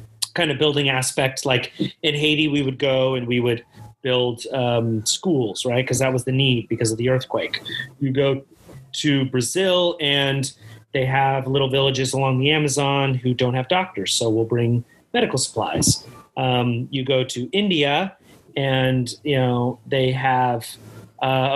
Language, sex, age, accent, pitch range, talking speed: English, male, 30-49, American, 125-145 Hz, 160 wpm